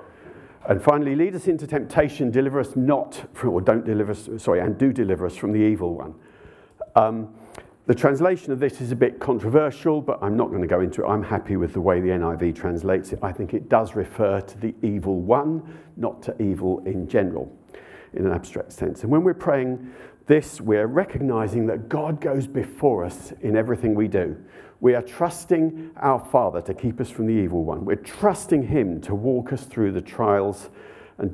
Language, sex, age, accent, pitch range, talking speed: English, male, 50-69, British, 100-145 Hz, 200 wpm